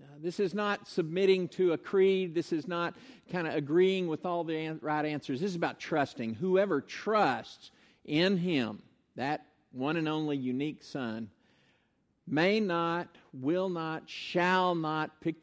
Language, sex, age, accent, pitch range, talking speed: English, male, 50-69, American, 145-190 Hz, 150 wpm